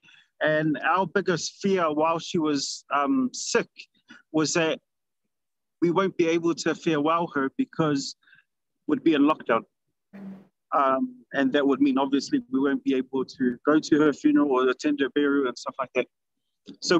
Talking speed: 165 wpm